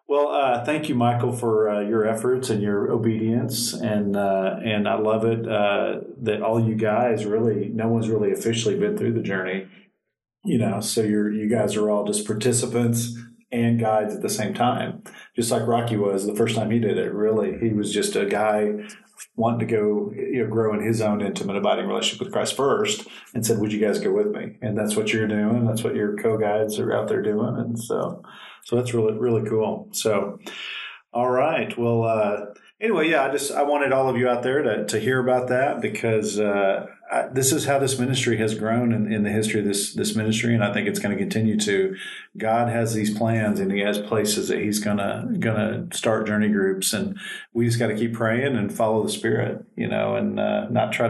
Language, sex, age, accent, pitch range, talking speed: English, male, 40-59, American, 105-120 Hz, 220 wpm